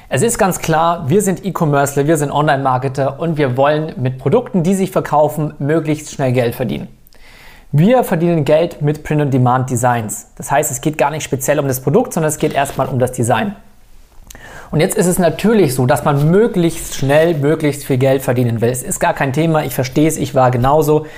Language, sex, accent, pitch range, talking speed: German, male, German, 140-170 Hz, 205 wpm